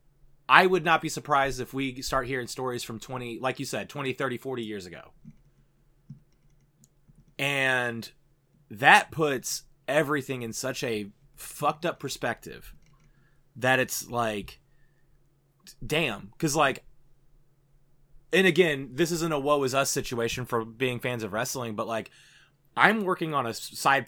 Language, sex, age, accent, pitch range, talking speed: English, male, 30-49, American, 125-150 Hz, 140 wpm